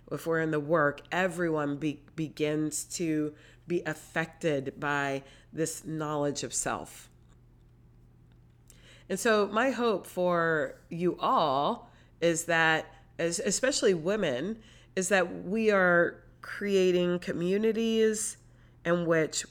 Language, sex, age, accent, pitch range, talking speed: English, female, 30-49, American, 150-180 Hz, 105 wpm